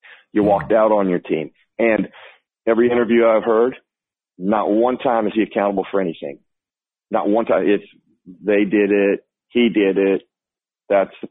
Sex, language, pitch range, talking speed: male, English, 100-115 Hz, 165 wpm